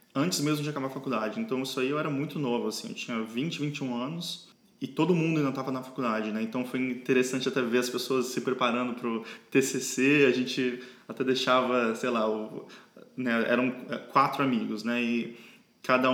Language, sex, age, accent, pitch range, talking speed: Portuguese, male, 20-39, Brazilian, 120-145 Hz, 195 wpm